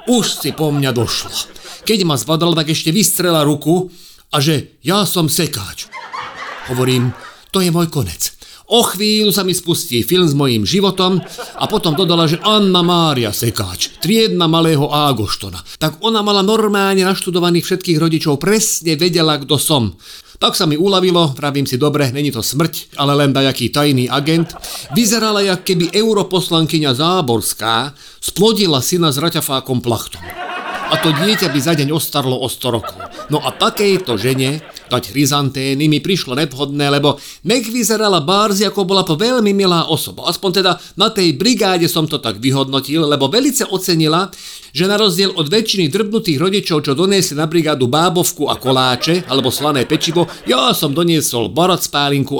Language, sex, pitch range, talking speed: Slovak, male, 140-185 Hz, 160 wpm